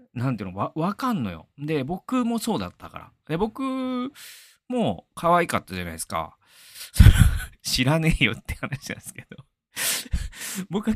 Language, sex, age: Japanese, male, 40-59